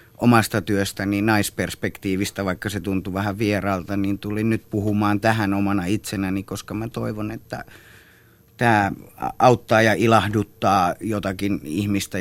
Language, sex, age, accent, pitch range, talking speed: Finnish, male, 30-49, native, 100-115 Hz, 125 wpm